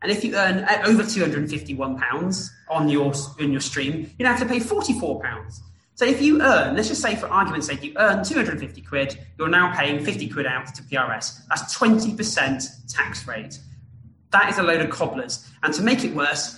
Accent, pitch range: British, 140-230 Hz